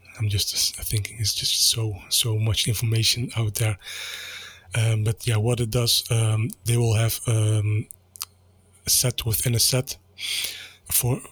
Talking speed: 150 wpm